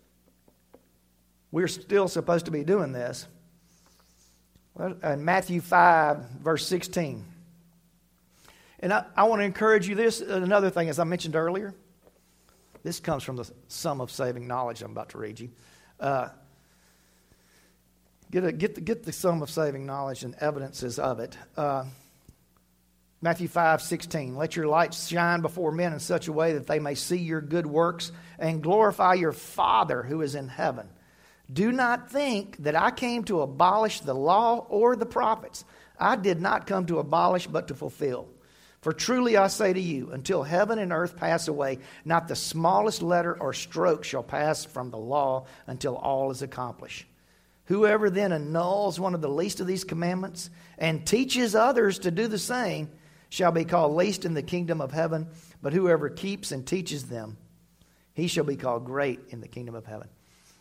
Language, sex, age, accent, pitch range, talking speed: English, male, 50-69, American, 135-180 Hz, 170 wpm